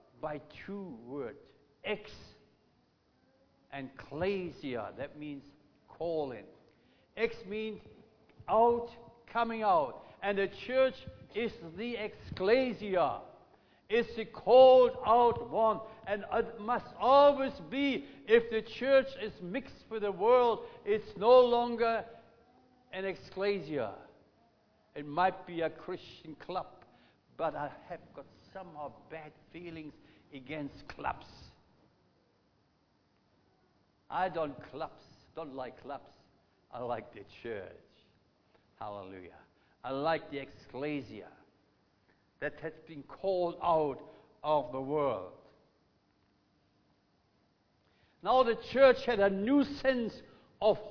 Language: English